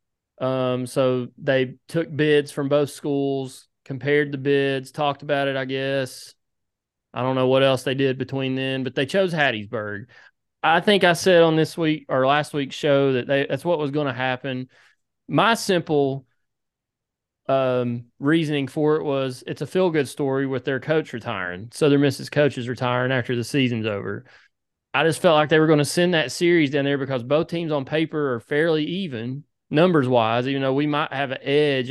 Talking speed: 190 wpm